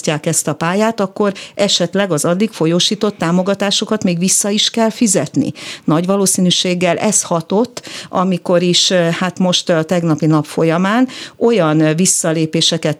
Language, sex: Hungarian, female